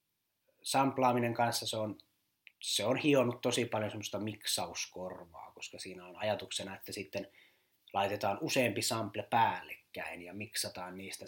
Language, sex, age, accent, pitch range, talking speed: Finnish, male, 30-49, native, 100-125 Hz, 130 wpm